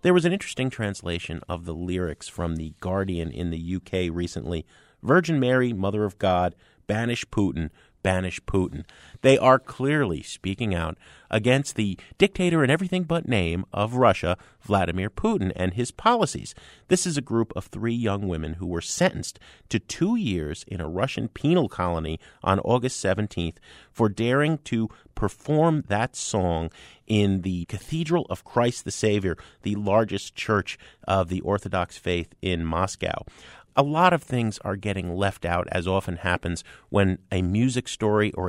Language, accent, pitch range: English, American, 90-130 Hz